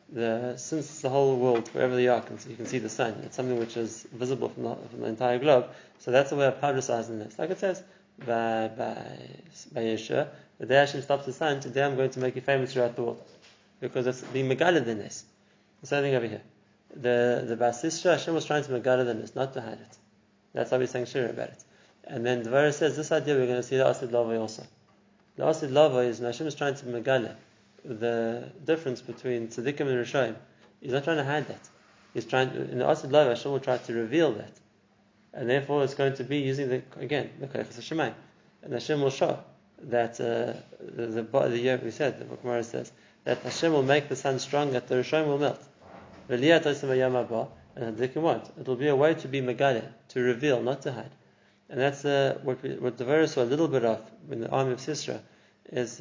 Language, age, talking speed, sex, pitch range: English, 20-39, 215 wpm, male, 120-140 Hz